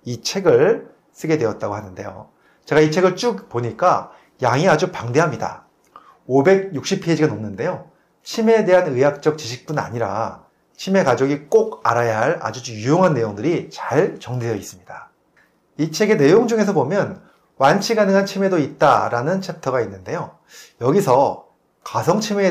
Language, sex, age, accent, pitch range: Korean, male, 30-49, native, 125-185 Hz